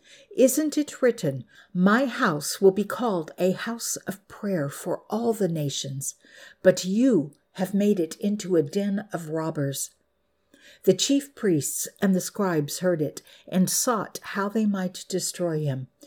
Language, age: English, 60-79